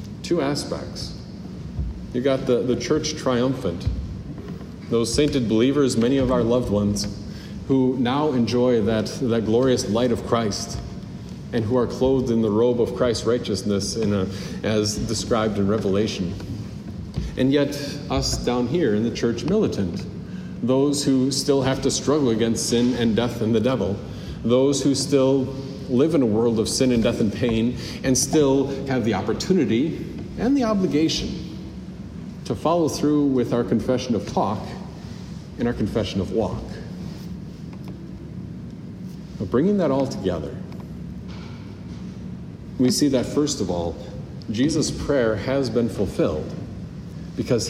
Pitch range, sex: 110-135 Hz, male